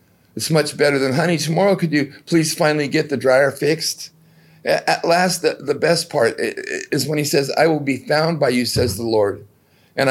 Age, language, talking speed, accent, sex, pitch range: 50-69, English, 200 wpm, American, male, 115-150 Hz